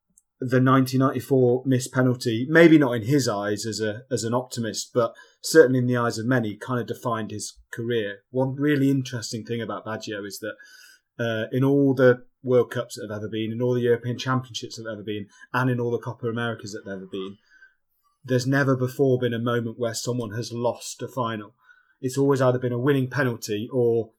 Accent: British